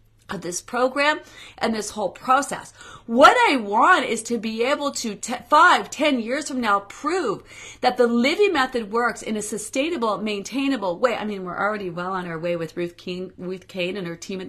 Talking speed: 205 wpm